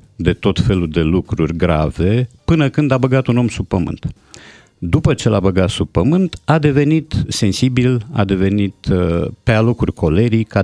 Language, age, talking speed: Romanian, 50-69, 165 wpm